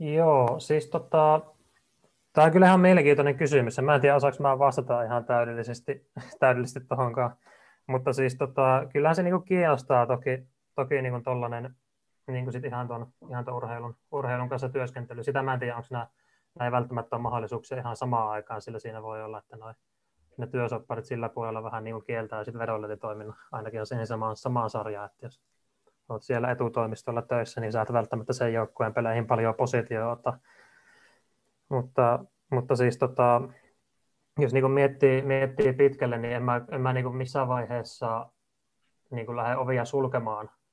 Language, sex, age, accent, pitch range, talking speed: Finnish, male, 20-39, native, 115-135 Hz, 160 wpm